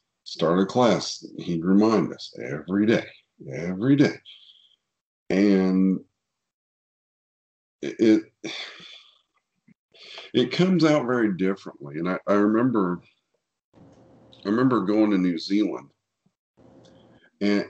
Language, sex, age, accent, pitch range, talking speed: English, male, 50-69, American, 90-110 Hz, 95 wpm